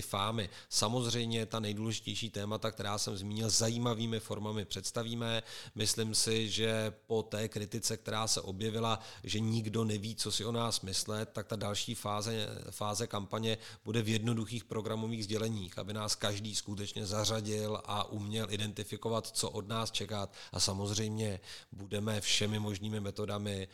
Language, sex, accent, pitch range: Czech, male, native, 100-115 Hz